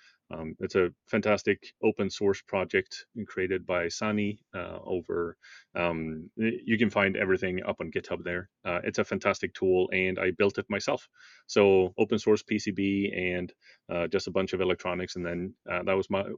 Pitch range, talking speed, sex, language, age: 90-105 Hz, 175 wpm, male, English, 30-49